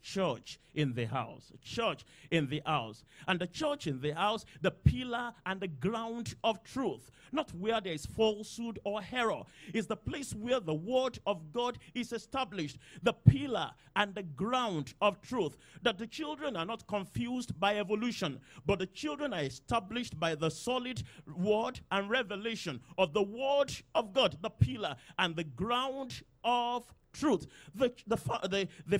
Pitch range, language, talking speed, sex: 165-240 Hz, English, 165 wpm, male